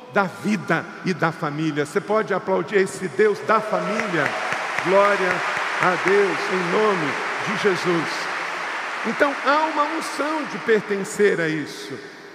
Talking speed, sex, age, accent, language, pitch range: 130 wpm, male, 50-69, Brazilian, Portuguese, 195-245 Hz